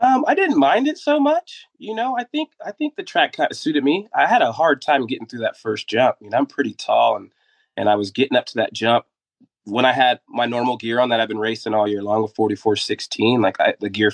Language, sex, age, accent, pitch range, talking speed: English, male, 20-39, American, 105-125 Hz, 270 wpm